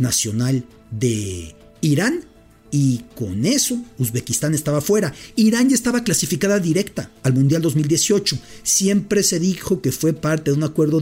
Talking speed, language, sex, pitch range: 140 wpm, English, male, 130-185 Hz